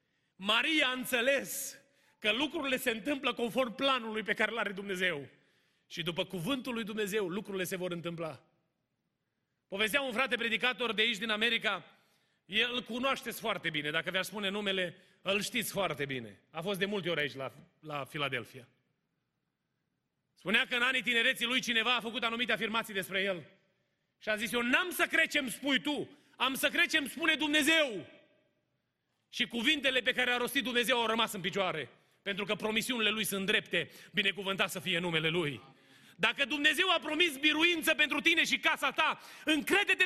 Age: 30-49